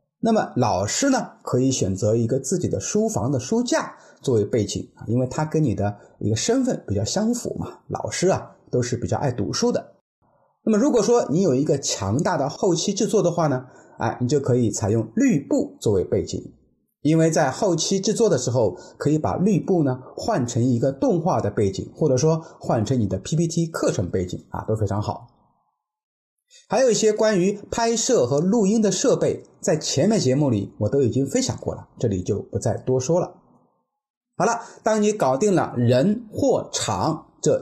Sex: male